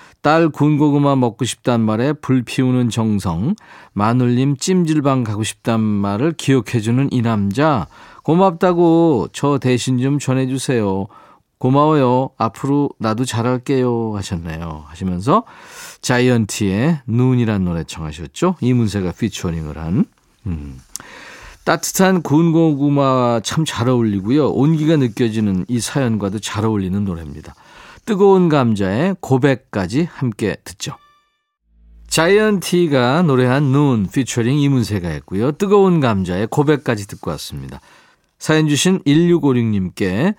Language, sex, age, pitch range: Korean, male, 40-59, 110-160 Hz